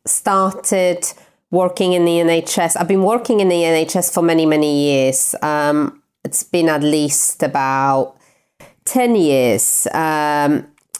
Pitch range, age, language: 155-180 Hz, 30-49, English